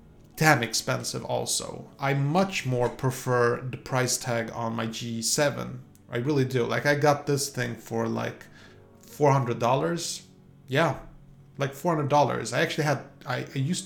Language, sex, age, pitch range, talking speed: English, male, 30-49, 120-145 Hz, 155 wpm